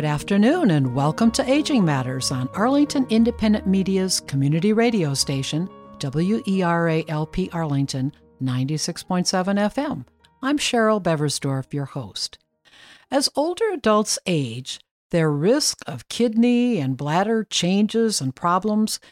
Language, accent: English, American